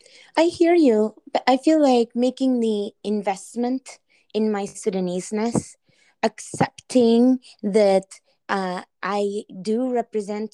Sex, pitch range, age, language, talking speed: female, 190-240 Hz, 20-39, English, 110 wpm